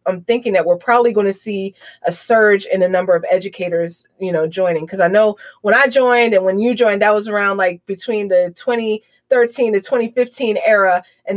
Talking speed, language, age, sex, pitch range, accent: 205 wpm, English, 20-39, female, 185-235 Hz, American